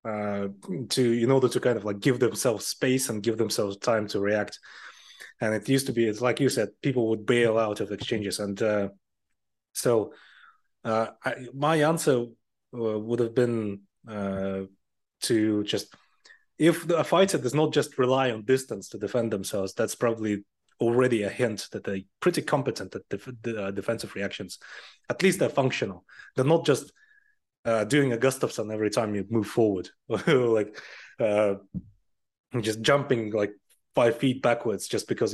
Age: 30-49